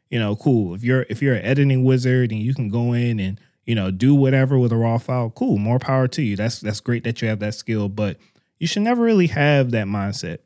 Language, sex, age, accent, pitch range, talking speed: English, male, 20-39, American, 105-130 Hz, 260 wpm